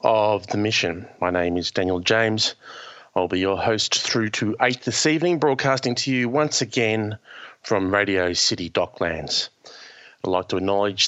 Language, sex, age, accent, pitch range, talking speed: English, male, 30-49, Australian, 95-125 Hz, 160 wpm